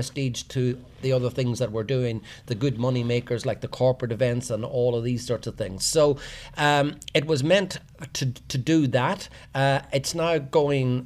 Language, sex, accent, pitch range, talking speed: English, male, Irish, 125-145 Hz, 195 wpm